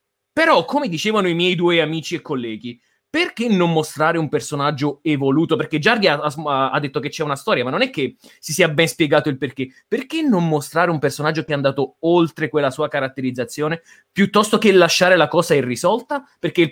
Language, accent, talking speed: Italian, native, 195 wpm